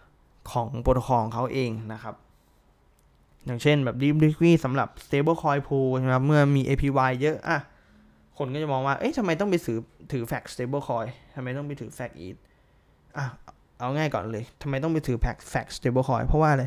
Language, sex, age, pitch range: Thai, male, 20-39, 120-150 Hz